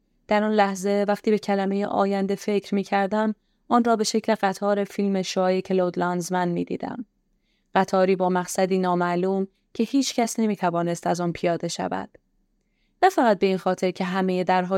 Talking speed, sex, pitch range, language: 160 wpm, female, 180-210 Hz, Persian